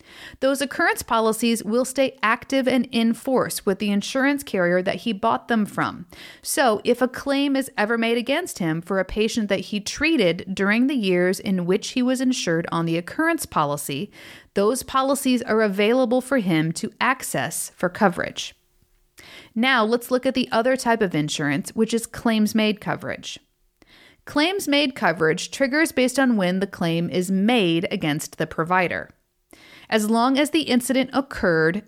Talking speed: 170 wpm